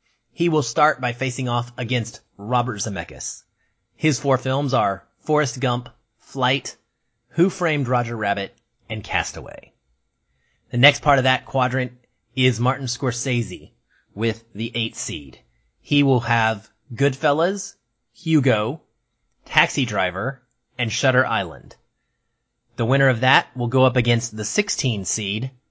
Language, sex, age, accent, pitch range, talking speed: English, male, 30-49, American, 110-135 Hz, 130 wpm